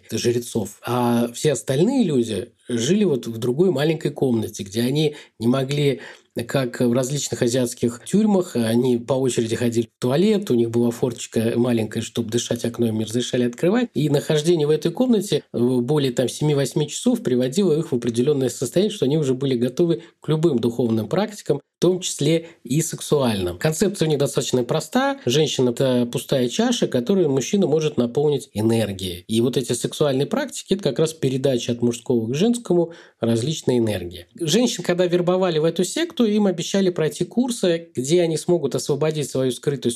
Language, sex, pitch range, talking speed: Russian, male, 120-175 Hz, 165 wpm